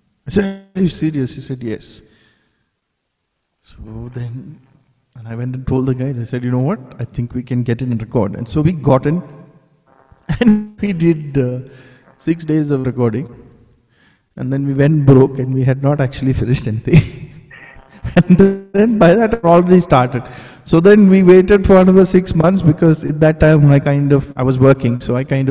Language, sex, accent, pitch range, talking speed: English, male, Indian, 130-165 Hz, 200 wpm